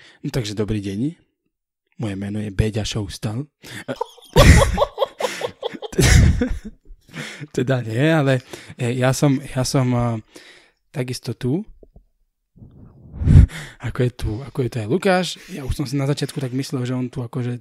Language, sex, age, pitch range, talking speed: Slovak, male, 20-39, 115-140 Hz, 130 wpm